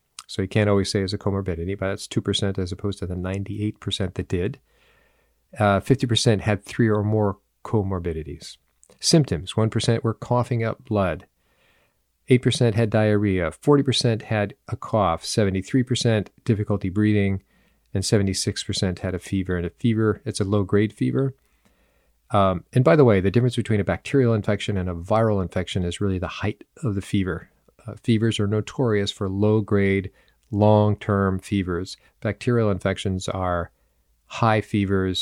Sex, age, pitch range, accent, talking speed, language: male, 40-59, 95-115 Hz, American, 150 wpm, English